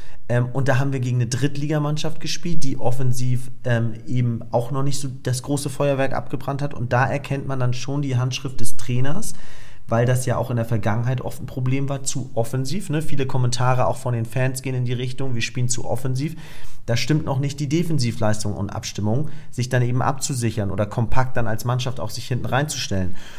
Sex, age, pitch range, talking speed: male, 40-59, 125-155 Hz, 200 wpm